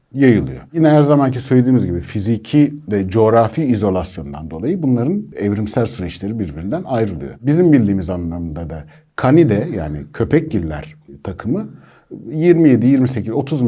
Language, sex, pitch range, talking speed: Turkish, male, 100-150 Hz, 110 wpm